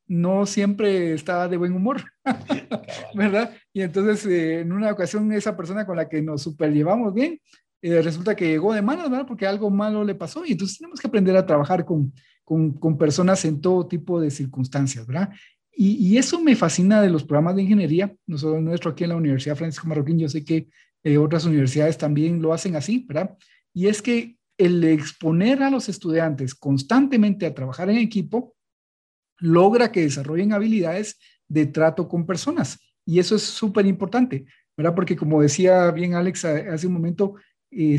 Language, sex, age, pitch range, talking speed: Spanish, male, 50-69, 155-200 Hz, 185 wpm